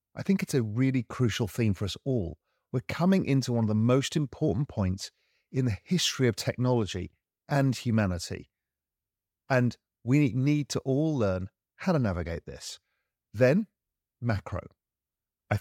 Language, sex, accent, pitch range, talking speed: English, male, British, 100-135 Hz, 150 wpm